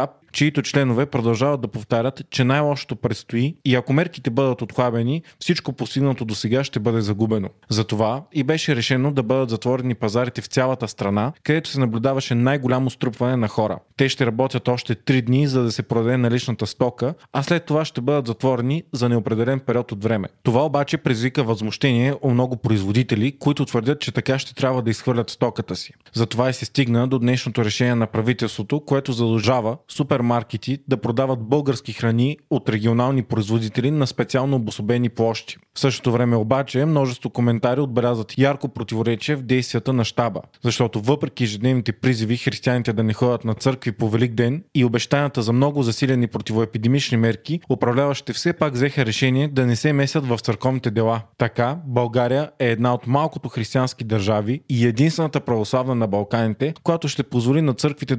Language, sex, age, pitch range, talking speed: Bulgarian, male, 30-49, 115-140 Hz, 170 wpm